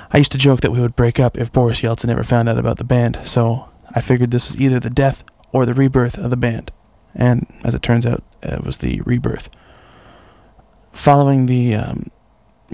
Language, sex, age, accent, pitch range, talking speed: English, male, 20-39, American, 115-130 Hz, 205 wpm